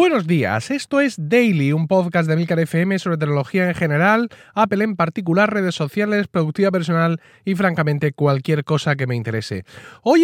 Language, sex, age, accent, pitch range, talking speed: Spanish, male, 30-49, Spanish, 120-165 Hz, 170 wpm